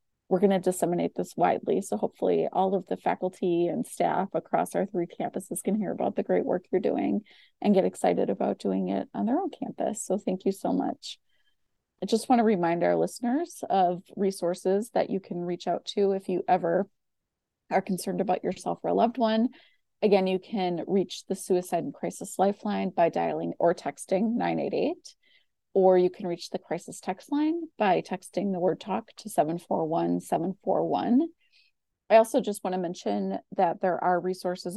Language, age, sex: English, 30-49, female